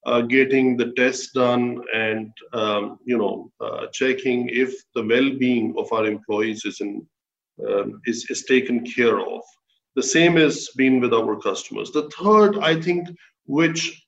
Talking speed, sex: 160 wpm, male